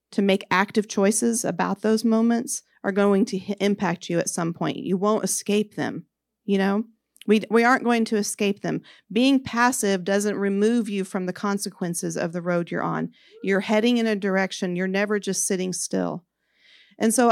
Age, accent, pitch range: 40-59, American, 195-240 Hz